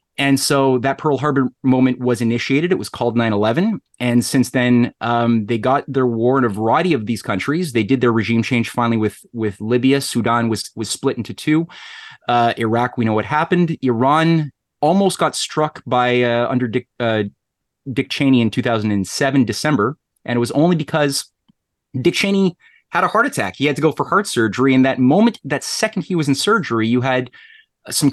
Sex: male